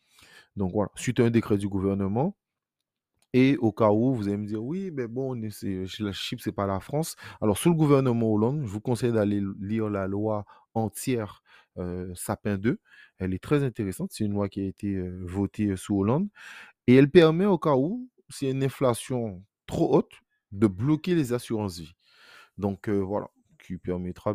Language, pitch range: French, 95-120 Hz